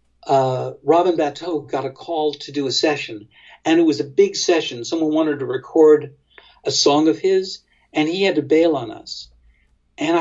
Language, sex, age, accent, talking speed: English, male, 60-79, American, 190 wpm